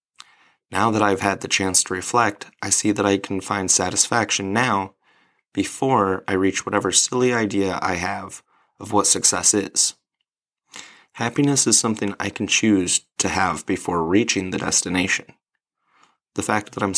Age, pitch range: 30-49, 95-115 Hz